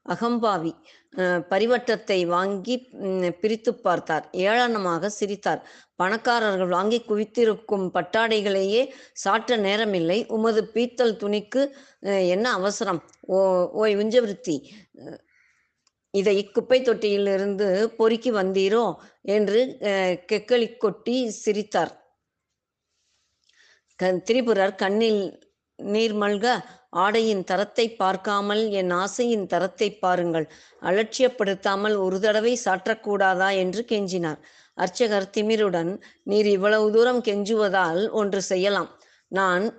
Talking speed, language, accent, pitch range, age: 80 wpm, Tamil, native, 190-225 Hz, 20-39